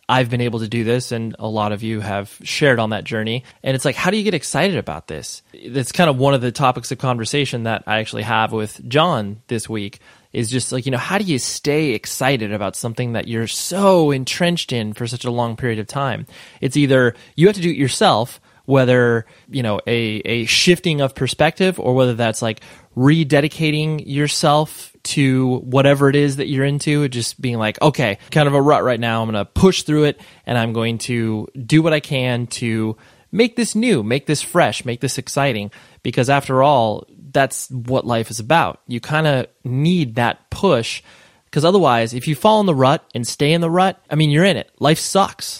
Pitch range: 120-150 Hz